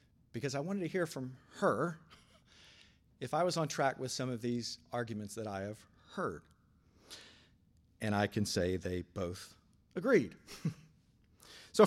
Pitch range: 110-155 Hz